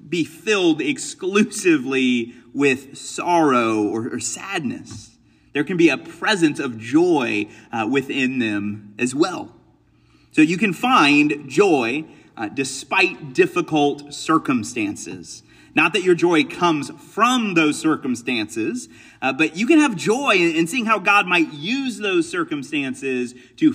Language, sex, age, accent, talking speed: English, male, 30-49, American, 135 wpm